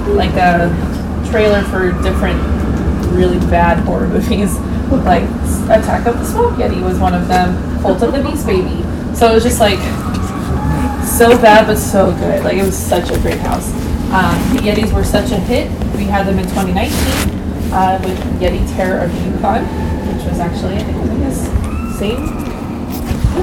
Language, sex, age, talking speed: English, female, 20-39, 175 wpm